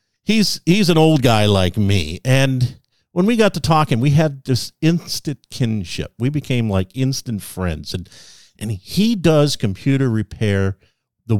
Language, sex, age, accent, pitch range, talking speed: English, male, 50-69, American, 105-145 Hz, 160 wpm